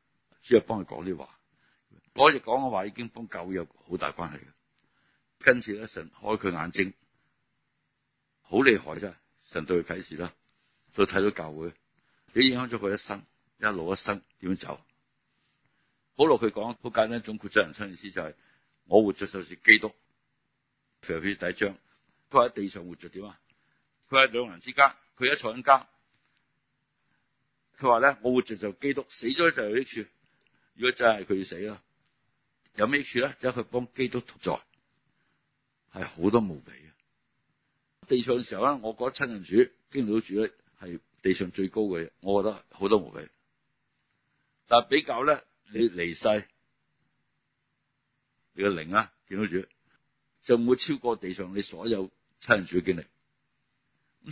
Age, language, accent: 60-79, Chinese, native